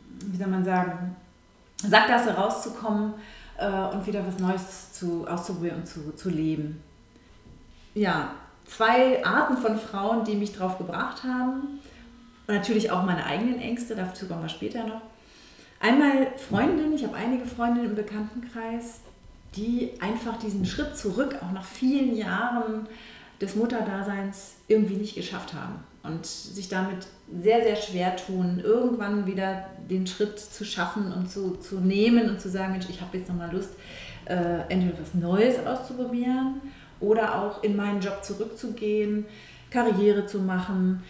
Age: 30-49